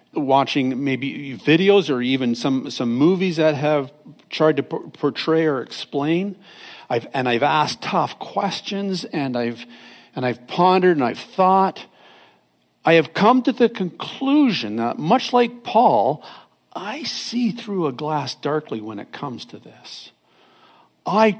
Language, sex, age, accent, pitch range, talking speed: English, male, 50-69, American, 135-190 Hz, 145 wpm